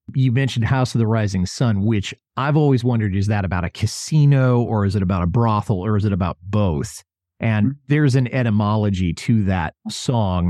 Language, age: English, 40-59